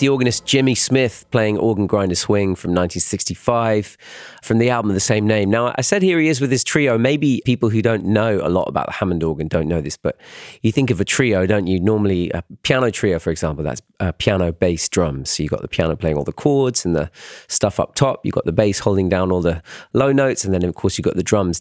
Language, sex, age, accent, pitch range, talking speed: French, male, 30-49, British, 90-120 Hz, 255 wpm